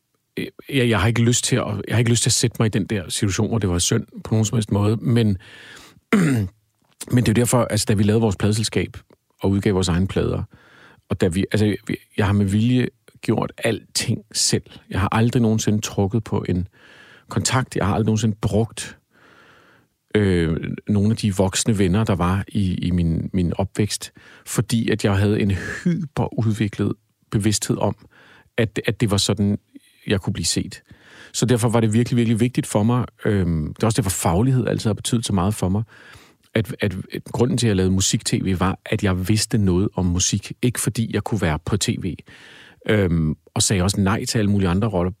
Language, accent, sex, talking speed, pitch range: Danish, native, male, 205 wpm, 100-125 Hz